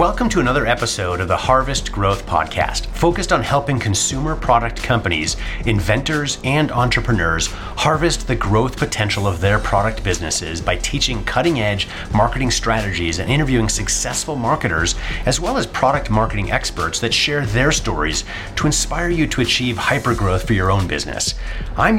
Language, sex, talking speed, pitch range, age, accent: English, male, 155 wpm, 95-125 Hz, 30-49, American